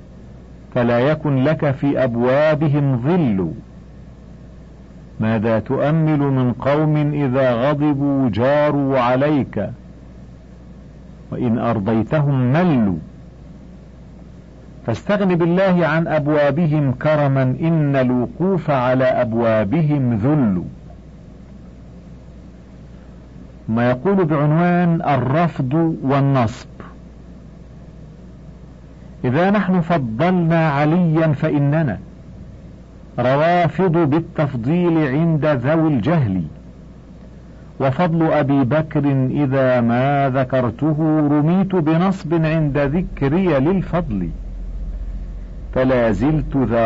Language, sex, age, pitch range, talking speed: Arabic, male, 50-69, 120-160 Hz, 70 wpm